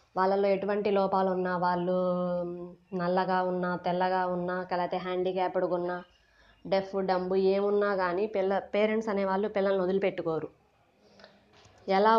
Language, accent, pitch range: Telugu, native, 180-205 Hz